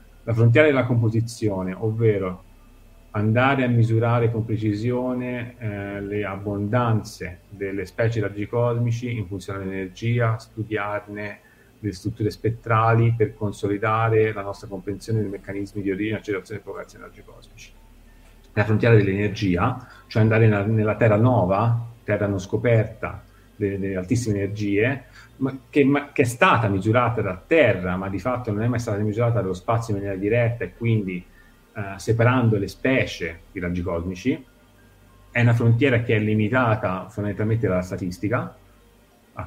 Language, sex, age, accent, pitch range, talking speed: Italian, male, 40-59, native, 100-115 Hz, 135 wpm